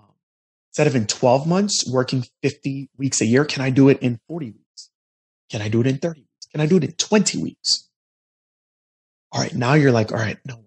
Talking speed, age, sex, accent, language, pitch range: 220 wpm, 30-49, male, American, English, 120-170 Hz